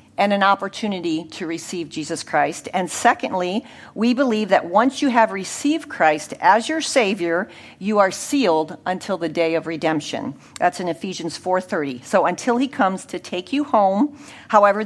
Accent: American